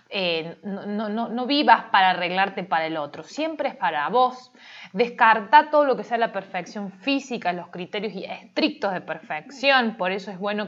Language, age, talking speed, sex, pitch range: Spanish, 20-39, 175 wpm, female, 190-265 Hz